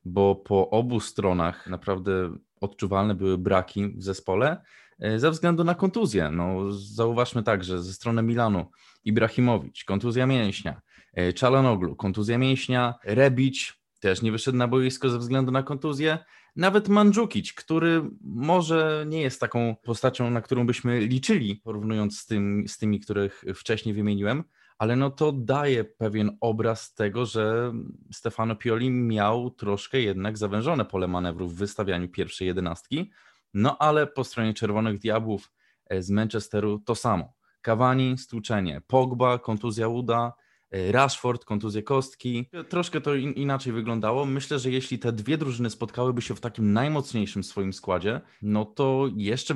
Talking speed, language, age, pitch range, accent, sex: 140 wpm, Polish, 20-39, 105-130 Hz, native, male